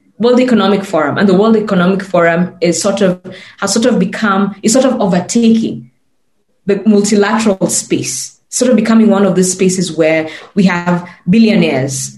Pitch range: 170-225 Hz